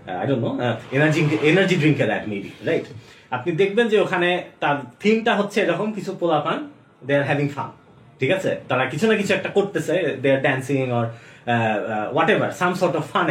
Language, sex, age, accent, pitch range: Bengali, male, 30-49, native, 130-180 Hz